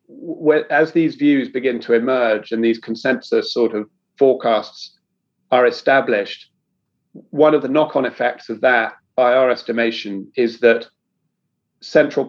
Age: 40-59